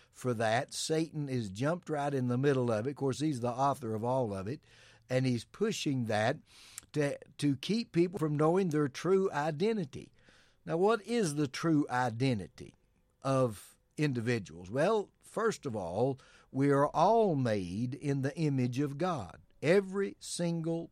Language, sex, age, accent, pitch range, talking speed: English, male, 60-79, American, 125-160 Hz, 160 wpm